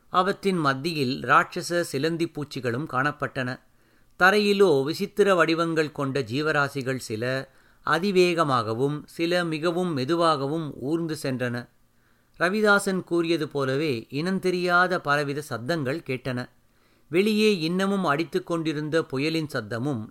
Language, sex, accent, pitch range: Tamil, male, native, 130-160 Hz